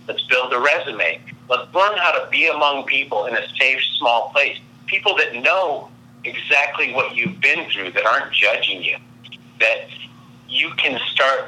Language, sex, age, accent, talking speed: English, male, 50-69, American, 165 wpm